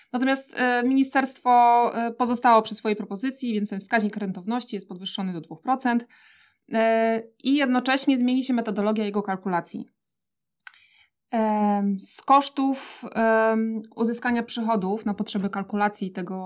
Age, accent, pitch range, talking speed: 20-39, native, 205-235 Hz, 105 wpm